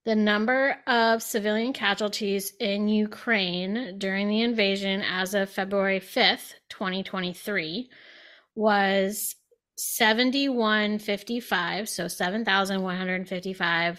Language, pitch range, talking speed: English, 195-235 Hz, 75 wpm